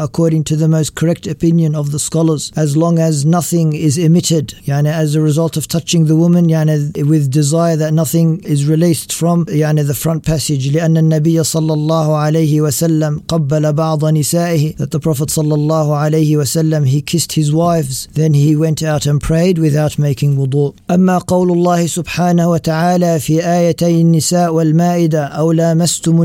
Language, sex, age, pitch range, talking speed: English, male, 40-59, 155-165 Hz, 175 wpm